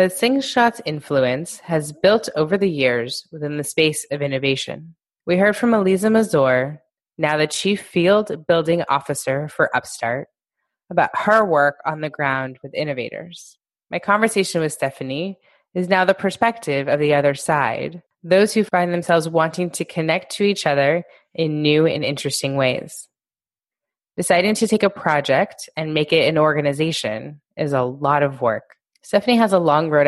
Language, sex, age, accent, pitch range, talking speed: English, female, 20-39, American, 140-180 Hz, 160 wpm